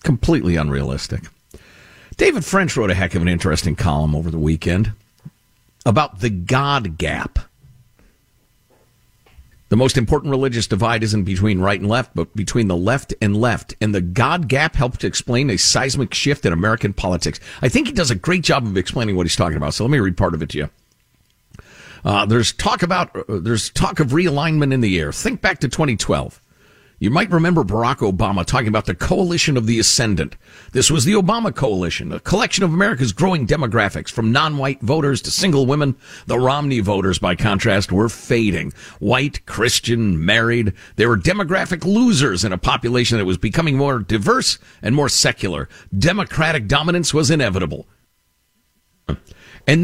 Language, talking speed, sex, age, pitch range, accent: English, 175 wpm, male, 50-69, 95-140 Hz, American